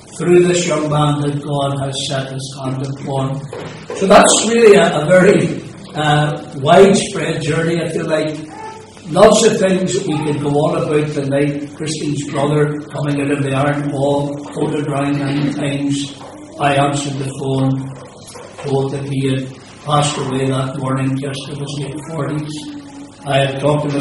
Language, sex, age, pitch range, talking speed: English, male, 60-79, 140-165 Hz, 160 wpm